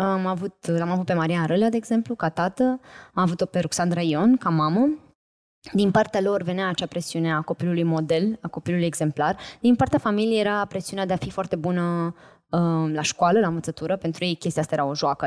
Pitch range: 165-220 Hz